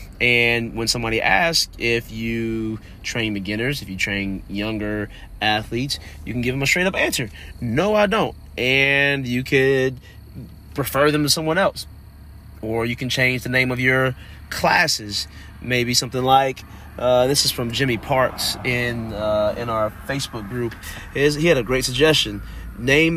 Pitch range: 90-130 Hz